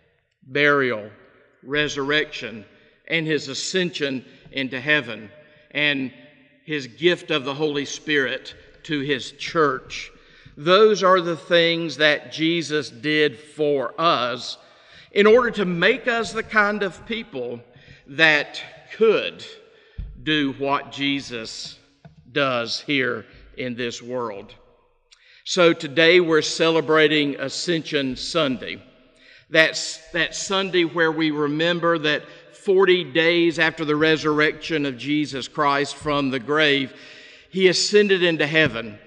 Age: 50-69